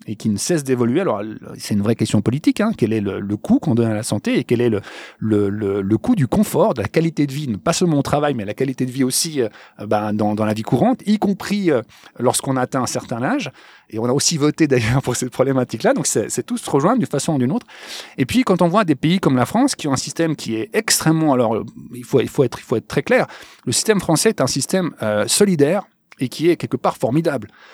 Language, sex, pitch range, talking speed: French, male, 120-185 Hz, 265 wpm